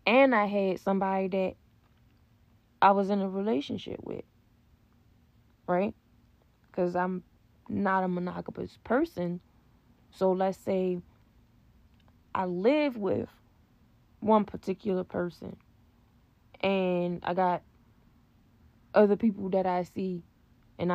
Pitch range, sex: 120-195 Hz, female